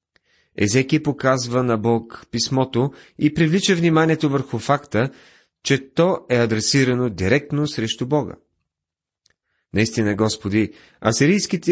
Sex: male